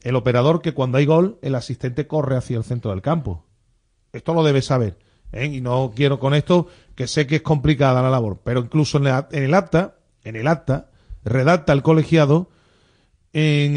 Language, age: Spanish, 40-59